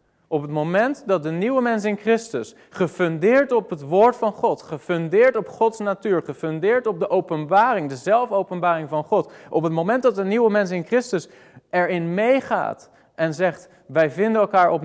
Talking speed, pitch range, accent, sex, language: 180 wpm, 150-205 Hz, Dutch, male, Dutch